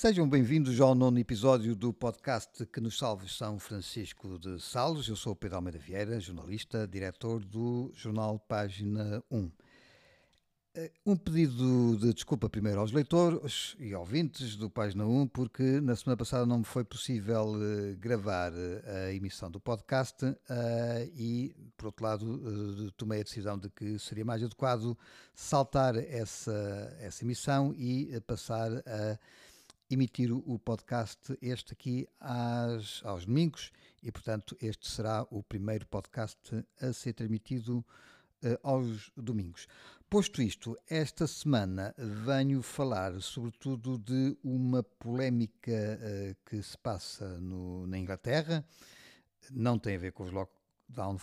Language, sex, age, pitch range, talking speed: Portuguese, male, 50-69, 105-125 Hz, 135 wpm